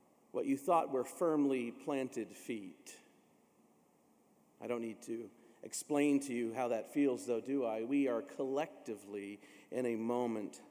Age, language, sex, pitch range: 40-59, English, male, 115-140 Hz